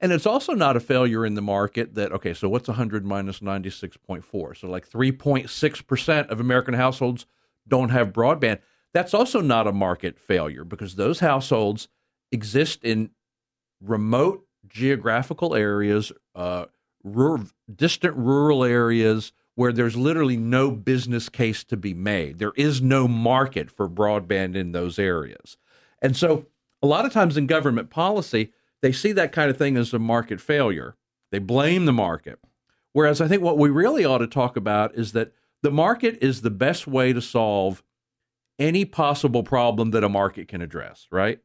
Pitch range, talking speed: 105-140 Hz, 165 wpm